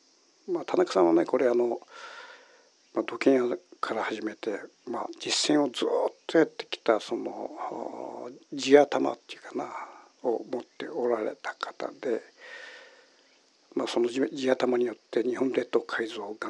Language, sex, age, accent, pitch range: Japanese, male, 60-79, native, 300-450 Hz